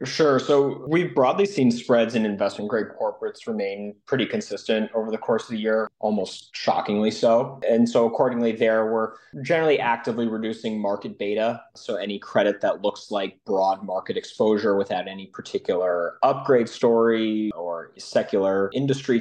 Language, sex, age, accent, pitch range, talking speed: English, male, 30-49, American, 95-125 Hz, 155 wpm